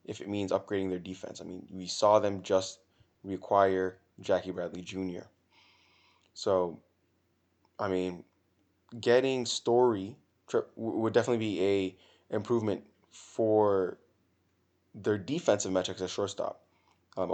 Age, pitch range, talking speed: 20-39, 90-105 Hz, 115 wpm